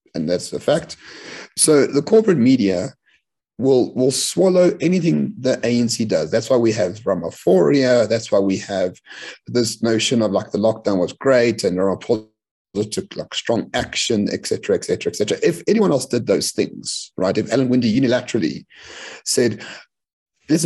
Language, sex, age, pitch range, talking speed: English, male, 30-49, 105-135 Hz, 165 wpm